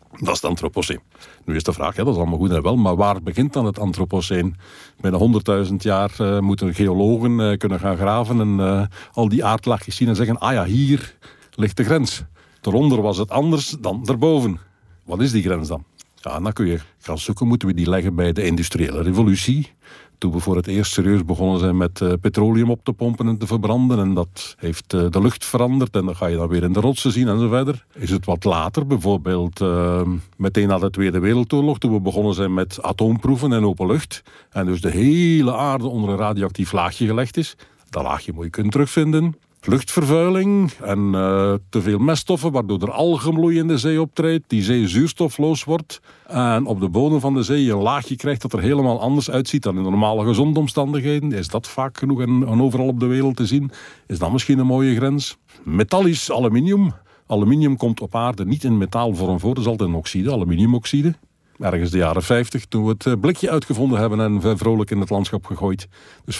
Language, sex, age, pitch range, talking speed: Dutch, male, 50-69, 95-135 Hz, 210 wpm